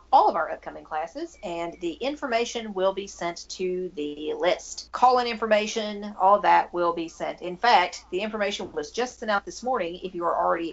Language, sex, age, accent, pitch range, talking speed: English, female, 40-59, American, 170-230 Hz, 195 wpm